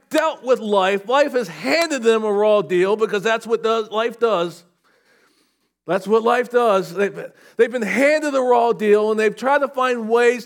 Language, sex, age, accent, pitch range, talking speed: English, male, 40-59, American, 170-235 Hz, 180 wpm